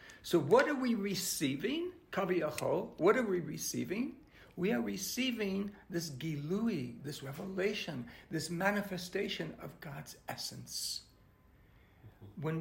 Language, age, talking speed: English, 60-79, 110 wpm